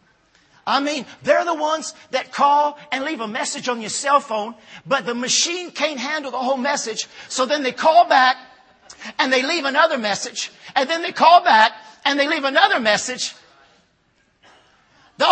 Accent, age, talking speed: American, 50-69, 170 wpm